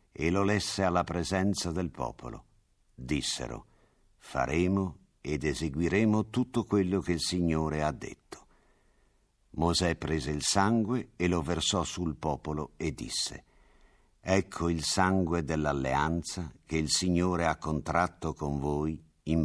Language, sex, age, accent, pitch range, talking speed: Italian, male, 60-79, native, 75-95 Hz, 125 wpm